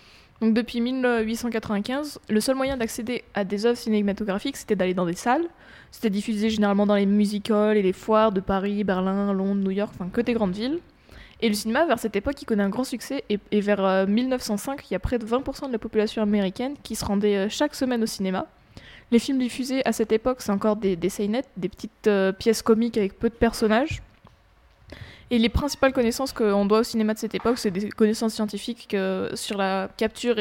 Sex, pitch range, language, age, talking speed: female, 200-235 Hz, French, 20-39, 215 wpm